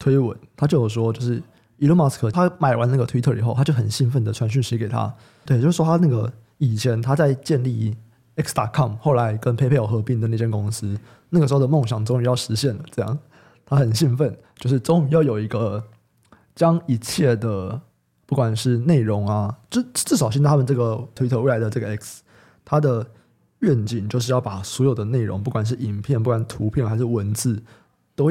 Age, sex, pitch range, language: 20-39, male, 115-140 Hz, Chinese